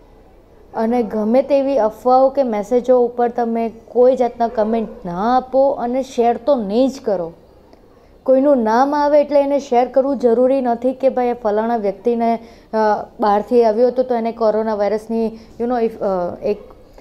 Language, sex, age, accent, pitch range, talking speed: Gujarati, female, 20-39, native, 220-255 Hz, 150 wpm